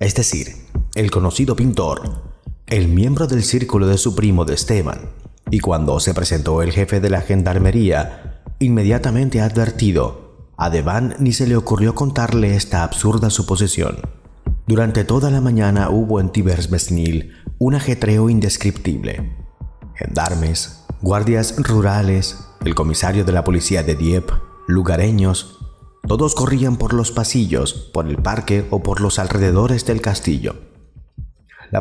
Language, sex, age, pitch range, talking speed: Spanish, male, 30-49, 90-115 Hz, 135 wpm